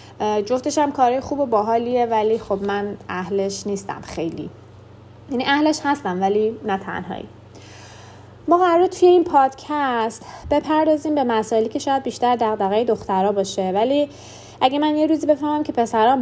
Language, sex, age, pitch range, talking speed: Persian, female, 20-39, 185-270 Hz, 140 wpm